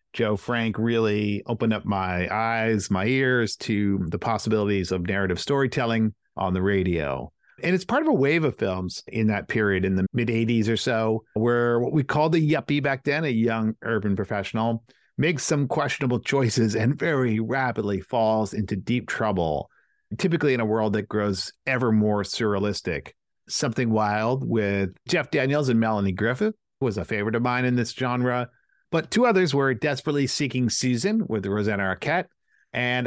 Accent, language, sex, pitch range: American, English, male, 110-140 Hz